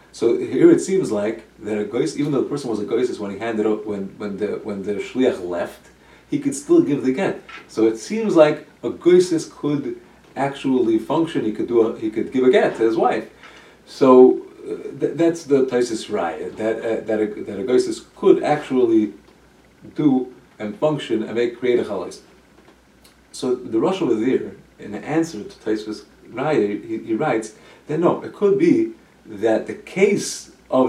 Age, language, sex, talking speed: 40-59, English, male, 190 wpm